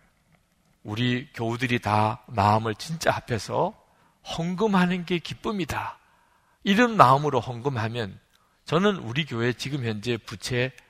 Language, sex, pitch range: Korean, male, 110-155 Hz